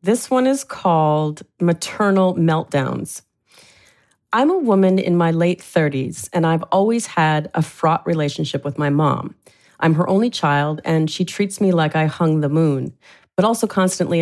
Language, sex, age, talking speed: English, female, 40-59, 165 wpm